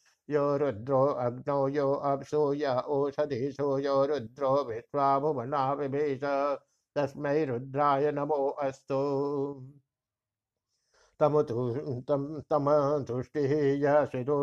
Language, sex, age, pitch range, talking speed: Hindi, male, 60-79, 135-145 Hz, 55 wpm